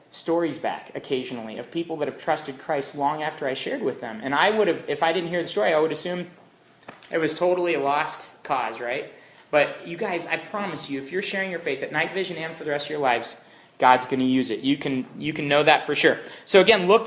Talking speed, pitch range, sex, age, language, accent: 255 wpm, 135-170 Hz, male, 30-49, English, American